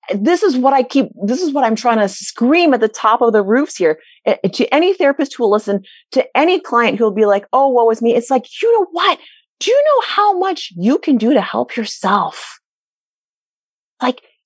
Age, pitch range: 30-49, 215-305 Hz